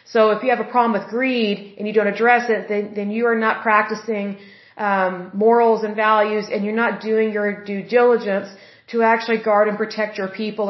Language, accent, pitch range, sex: Spanish, American, 205-225 Hz, female